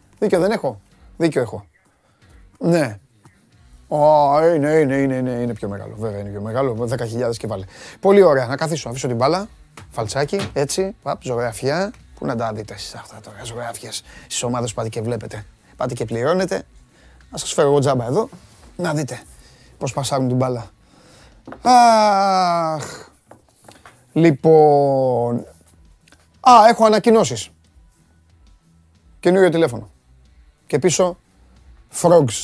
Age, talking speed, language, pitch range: 30-49, 130 wpm, Greek, 100-150 Hz